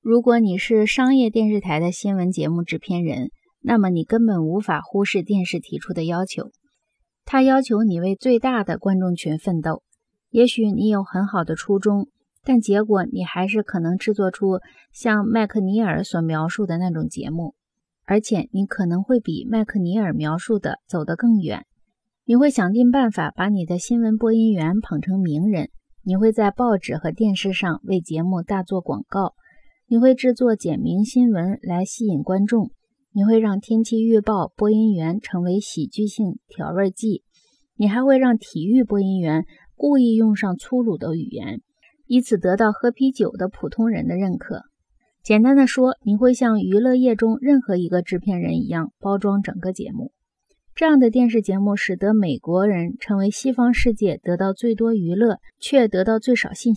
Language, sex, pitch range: Chinese, female, 185-235 Hz